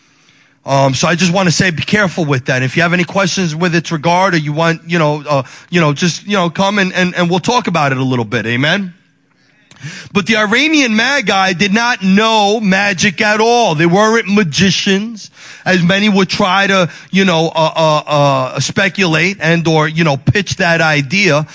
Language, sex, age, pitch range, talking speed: English, male, 30-49, 160-225 Hz, 205 wpm